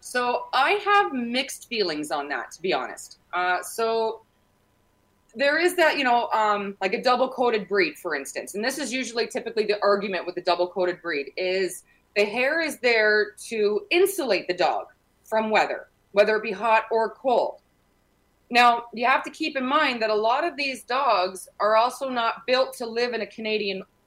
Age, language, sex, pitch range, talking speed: 20-39, English, female, 200-255 Hz, 185 wpm